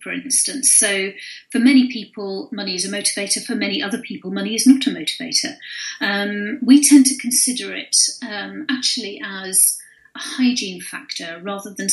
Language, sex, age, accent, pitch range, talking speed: English, female, 40-59, British, 205-280 Hz, 165 wpm